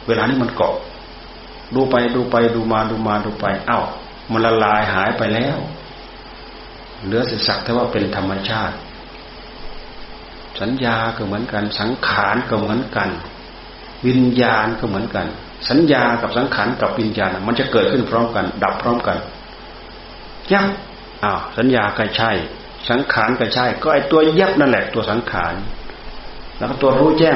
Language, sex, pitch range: Thai, male, 100-125 Hz